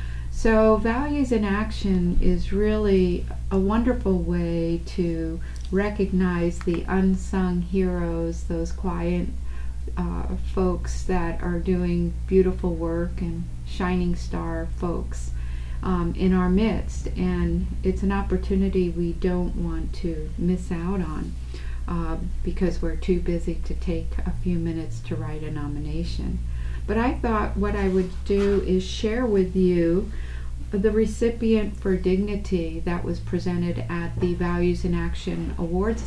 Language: English